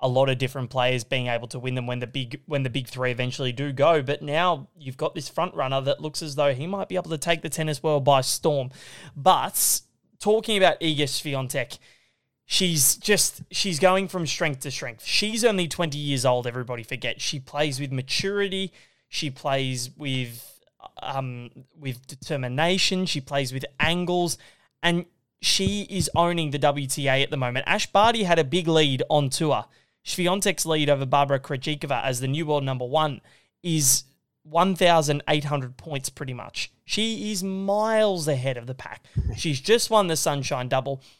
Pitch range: 135-175 Hz